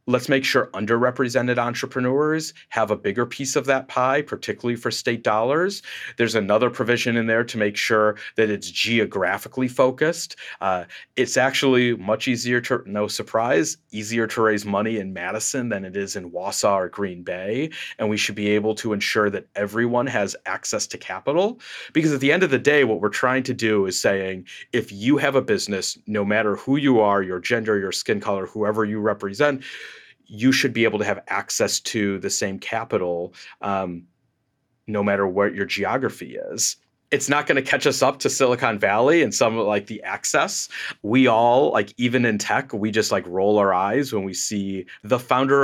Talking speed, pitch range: 190 wpm, 105-125 Hz